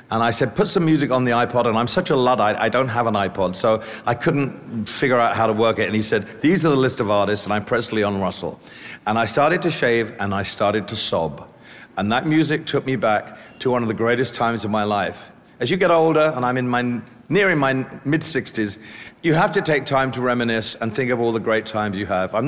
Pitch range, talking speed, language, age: 105-135 Hz, 255 wpm, English, 50-69